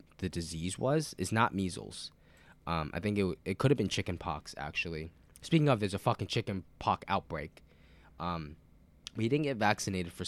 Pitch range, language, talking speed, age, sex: 80-105 Hz, English, 180 wpm, 10-29, male